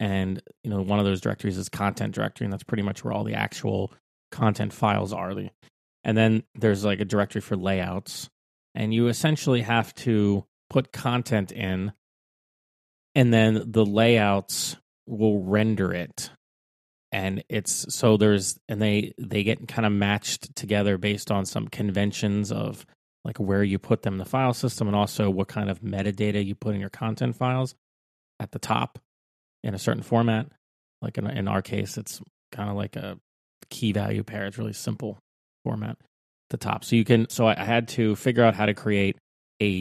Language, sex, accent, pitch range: English, male, American, 95-115 Hz